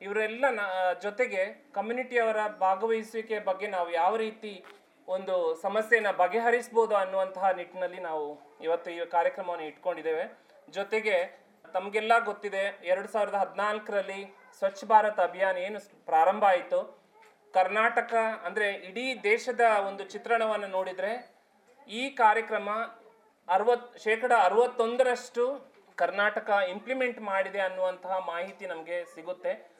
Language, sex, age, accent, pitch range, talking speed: English, male, 30-49, Indian, 185-225 Hz, 85 wpm